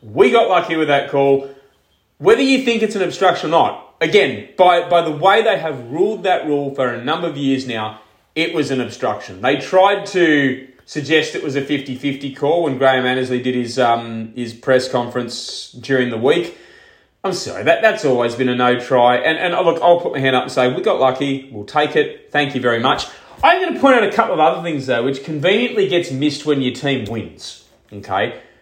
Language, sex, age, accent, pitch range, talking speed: English, male, 30-49, Australian, 130-185 Hz, 220 wpm